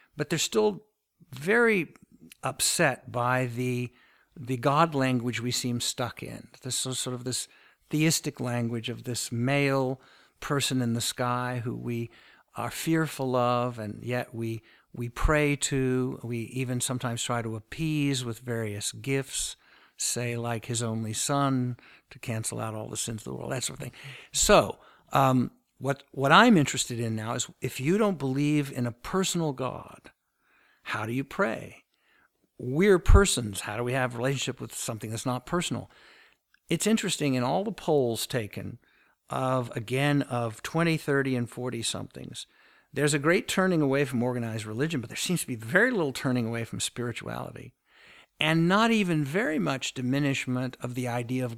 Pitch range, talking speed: 120-145 Hz, 165 wpm